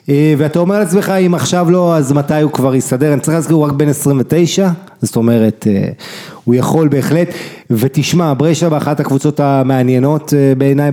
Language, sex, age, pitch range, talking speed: English, male, 30-49, 130-165 Hz, 165 wpm